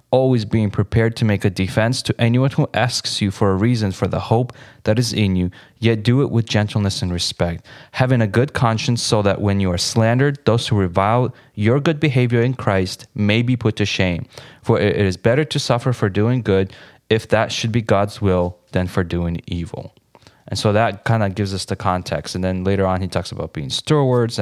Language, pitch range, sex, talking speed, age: English, 95-115 Hz, male, 220 wpm, 20-39